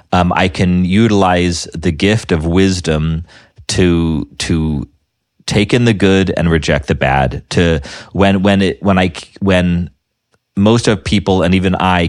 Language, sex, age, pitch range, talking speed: English, male, 30-49, 80-105 Hz, 155 wpm